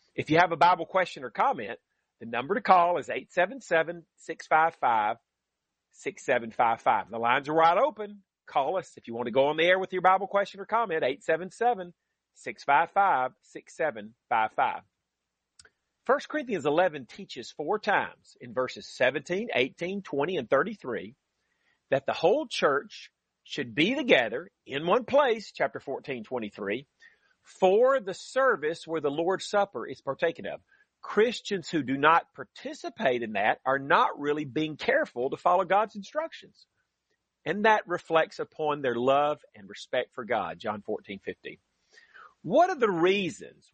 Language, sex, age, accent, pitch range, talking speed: English, male, 40-59, American, 145-220 Hz, 145 wpm